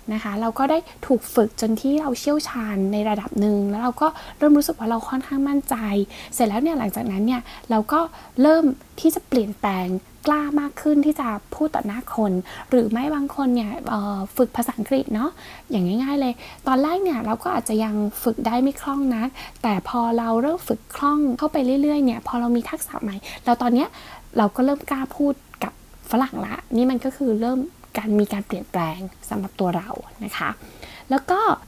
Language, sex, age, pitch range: Thai, female, 10-29, 220-290 Hz